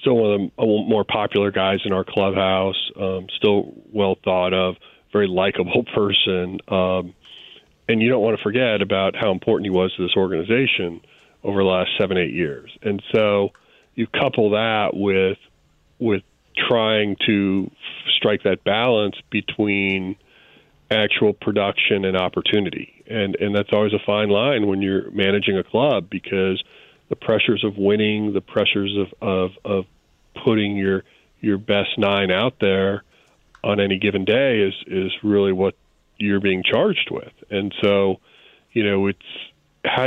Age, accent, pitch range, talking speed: 40-59, American, 95-105 Hz, 155 wpm